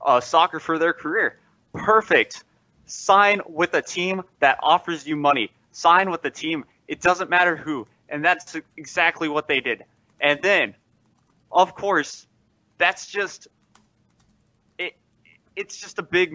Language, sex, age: English, male, 20-39